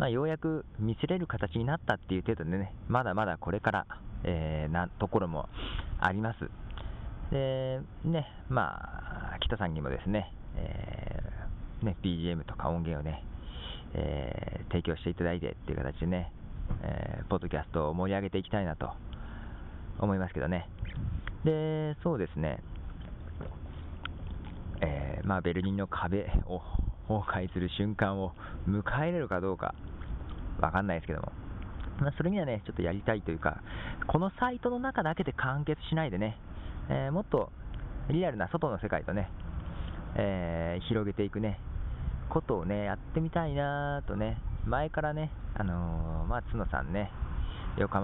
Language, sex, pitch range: Japanese, male, 85-110 Hz